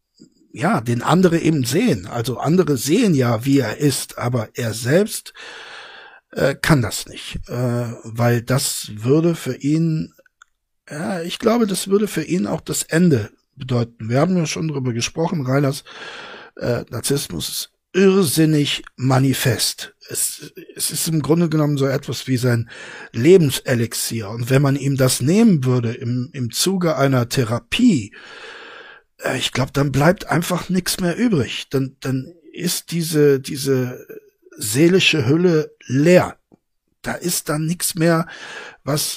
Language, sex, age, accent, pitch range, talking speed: German, male, 60-79, German, 130-175 Hz, 145 wpm